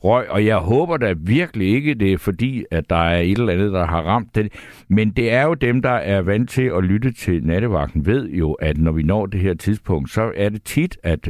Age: 60-79